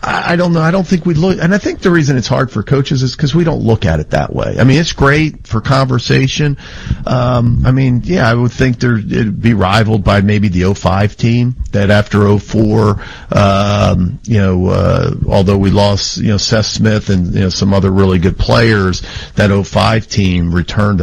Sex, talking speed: male, 210 wpm